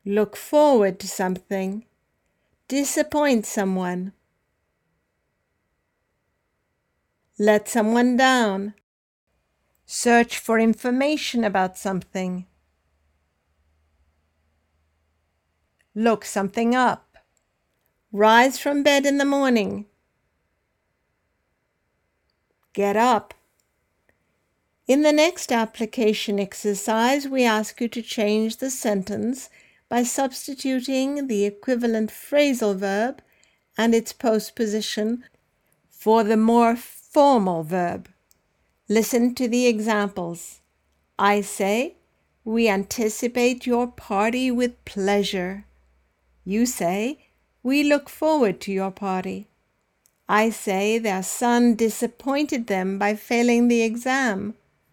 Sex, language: female, English